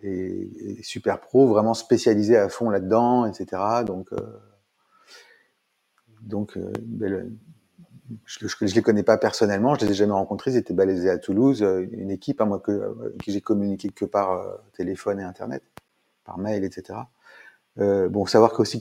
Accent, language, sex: French, French, male